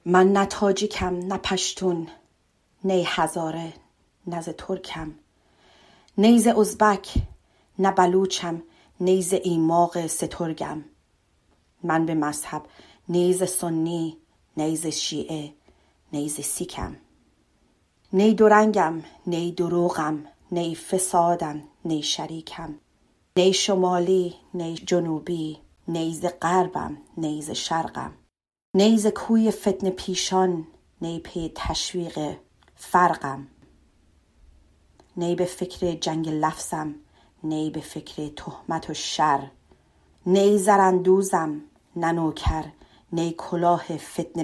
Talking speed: 90 wpm